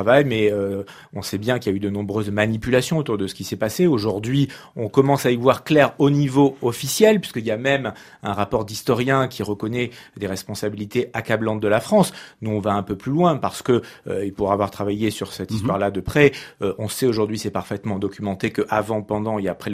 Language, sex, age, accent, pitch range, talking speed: French, male, 30-49, French, 100-140 Hz, 220 wpm